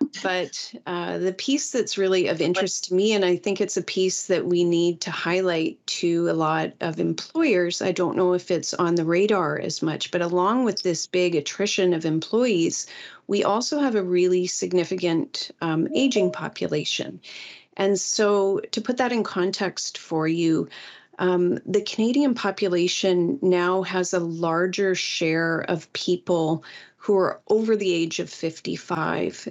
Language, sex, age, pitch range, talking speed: English, female, 30-49, 170-200 Hz, 165 wpm